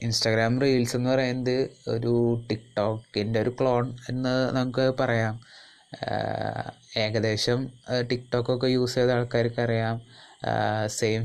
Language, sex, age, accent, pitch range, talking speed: Malayalam, male, 20-39, native, 110-125 Hz, 95 wpm